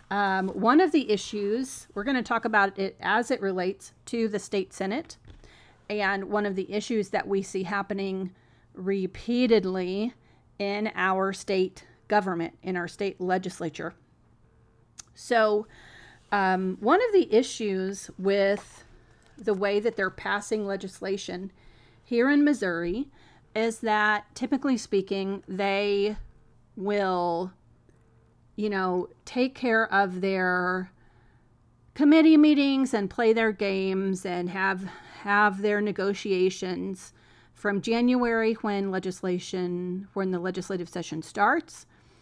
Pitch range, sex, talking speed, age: 185-220 Hz, female, 120 wpm, 40-59